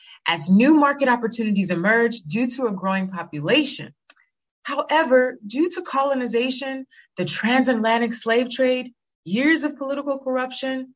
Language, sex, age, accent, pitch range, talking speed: English, female, 30-49, American, 190-275 Hz, 120 wpm